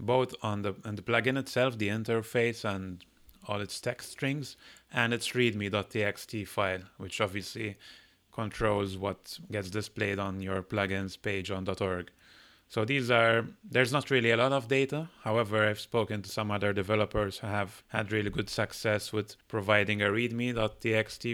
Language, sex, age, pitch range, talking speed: English, male, 30-49, 100-115 Hz, 155 wpm